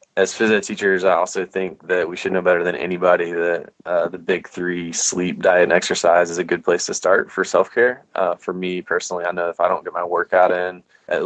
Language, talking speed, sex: English, 235 wpm, male